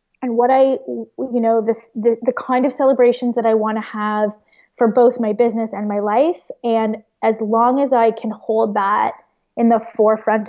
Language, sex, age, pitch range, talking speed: English, female, 20-39, 210-250 Hz, 190 wpm